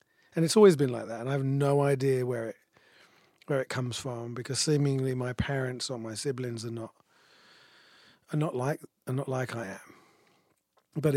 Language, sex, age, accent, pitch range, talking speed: English, male, 30-49, British, 120-140 Hz, 190 wpm